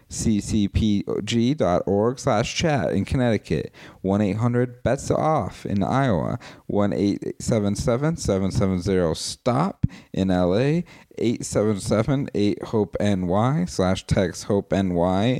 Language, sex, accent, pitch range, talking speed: English, male, American, 100-125 Hz, 65 wpm